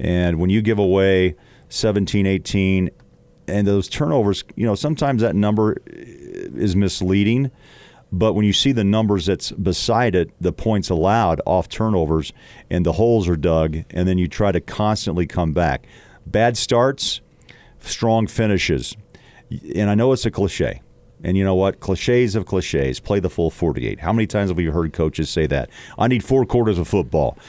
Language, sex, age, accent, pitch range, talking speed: English, male, 40-59, American, 90-115 Hz, 175 wpm